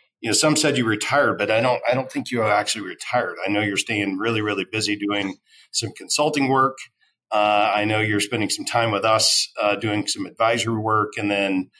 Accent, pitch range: American, 100-120 Hz